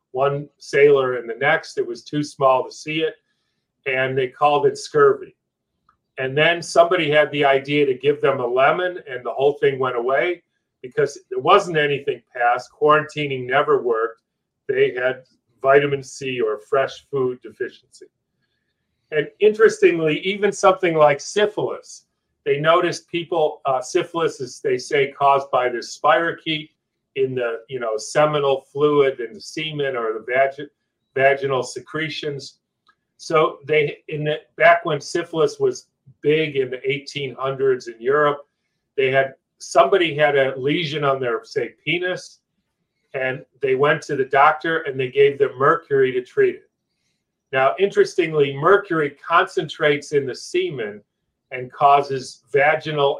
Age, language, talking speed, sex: 40-59, English, 145 wpm, male